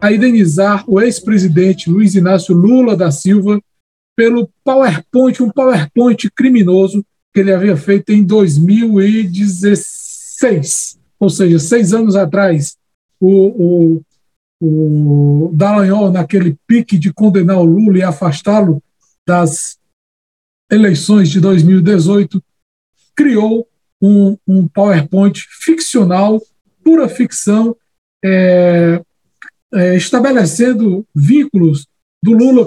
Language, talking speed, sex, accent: Portuguese, 100 wpm, male, Brazilian